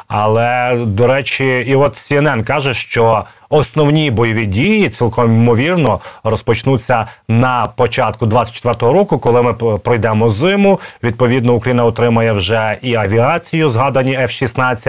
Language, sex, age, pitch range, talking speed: Ukrainian, male, 30-49, 110-135 Hz, 120 wpm